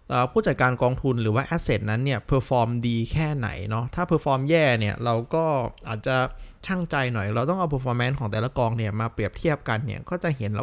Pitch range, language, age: 110-140 Hz, Thai, 20-39